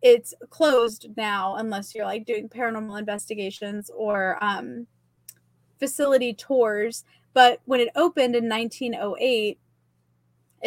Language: English